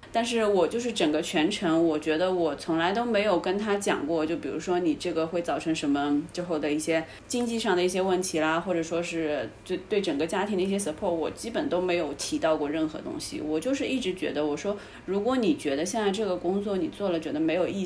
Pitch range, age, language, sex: 170-235 Hz, 20-39, Chinese, female